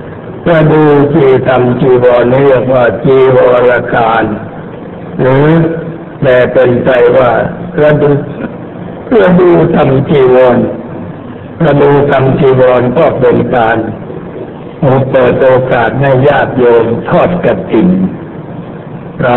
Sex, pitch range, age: male, 115-140 Hz, 60-79